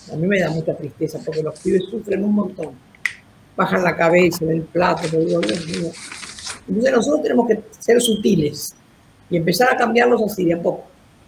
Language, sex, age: Spanish, female, 50-69